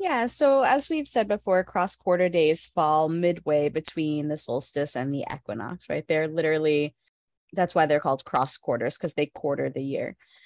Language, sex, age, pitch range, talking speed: English, female, 20-39, 145-170 Hz, 180 wpm